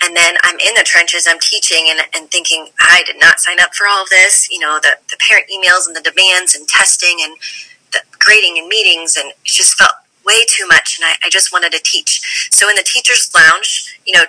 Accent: American